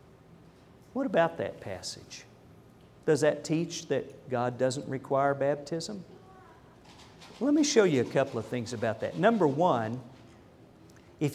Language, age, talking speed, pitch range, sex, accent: English, 50-69, 130 wpm, 125-190 Hz, male, American